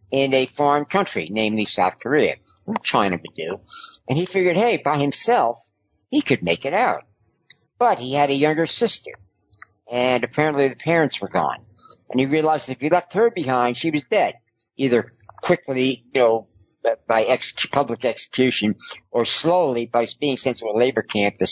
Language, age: English, 50-69